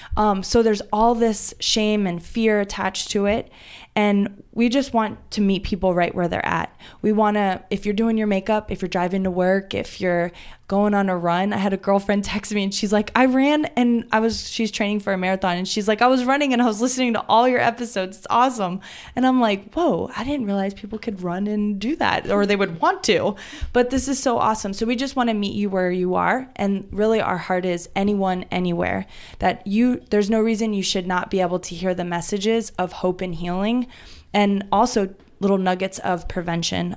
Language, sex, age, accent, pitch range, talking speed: English, female, 20-39, American, 180-220 Hz, 225 wpm